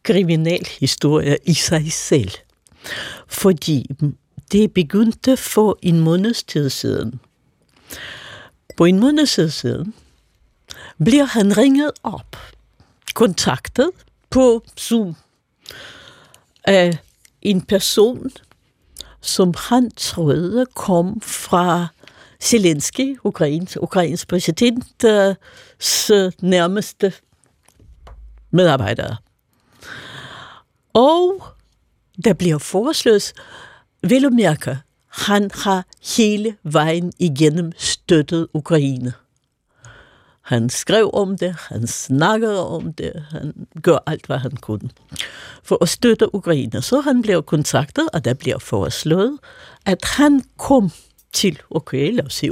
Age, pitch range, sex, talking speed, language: 60-79, 150-220 Hz, female, 90 wpm, Danish